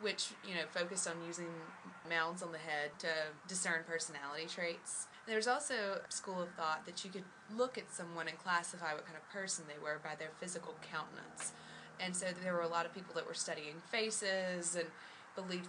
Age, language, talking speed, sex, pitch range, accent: 20-39, English, 205 wpm, female, 160-195 Hz, American